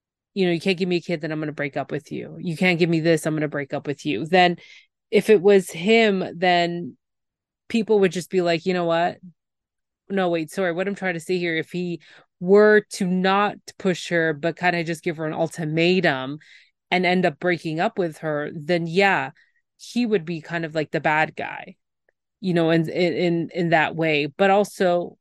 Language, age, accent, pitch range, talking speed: English, 20-39, American, 160-195 Hz, 220 wpm